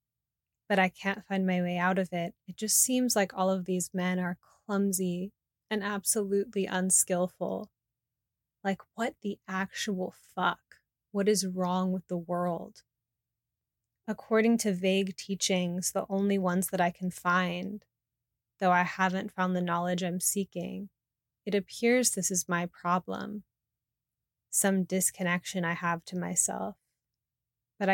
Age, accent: 20-39, American